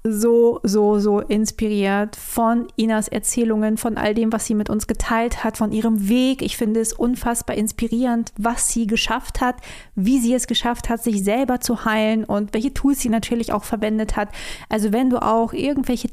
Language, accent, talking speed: German, German, 185 wpm